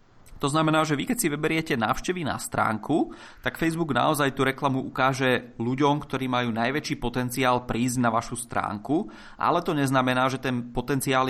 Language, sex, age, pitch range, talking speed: Czech, male, 20-39, 105-125 Hz, 165 wpm